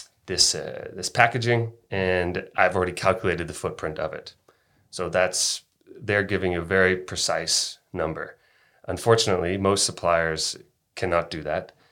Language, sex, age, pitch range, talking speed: Danish, male, 30-49, 85-95 Hz, 135 wpm